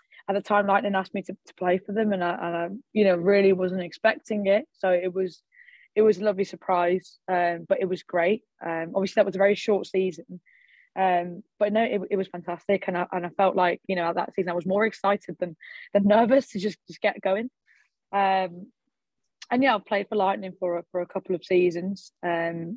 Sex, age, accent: female, 10-29, British